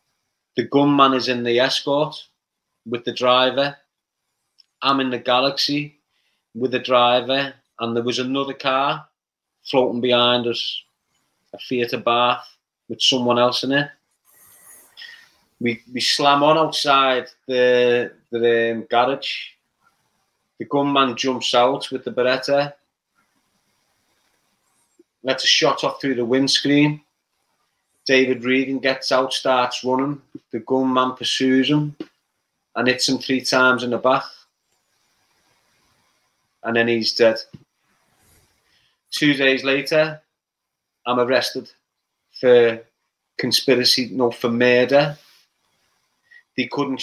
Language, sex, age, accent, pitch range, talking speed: English, male, 30-49, British, 125-140 Hz, 115 wpm